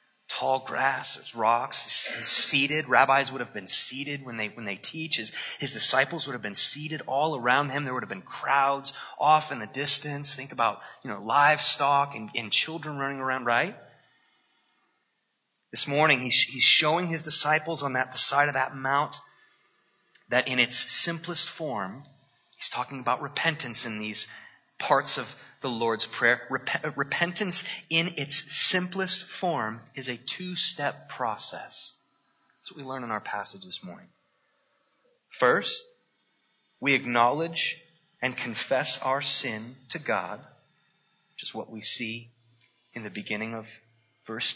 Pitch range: 115-160 Hz